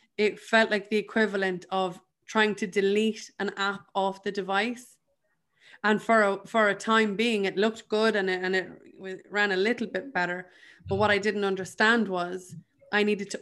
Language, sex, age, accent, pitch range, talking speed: English, female, 20-39, Irish, 195-220 Hz, 190 wpm